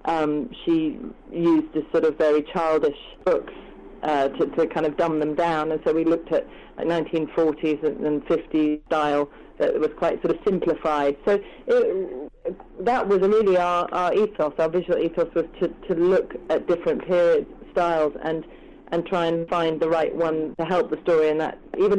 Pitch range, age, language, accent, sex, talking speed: 155-185 Hz, 40-59, English, British, female, 185 wpm